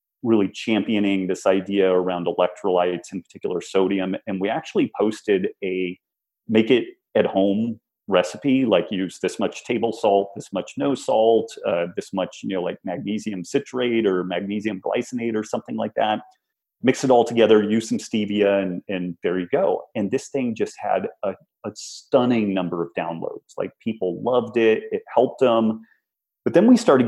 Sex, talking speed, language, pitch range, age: male, 175 wpm, English, 95-115 Hz, 30-49